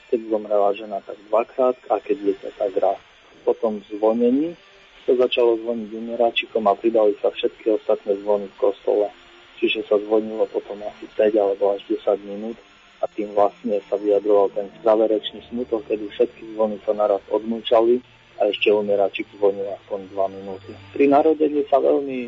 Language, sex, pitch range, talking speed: Slovak, male, 105-120 Hz, 160 wpm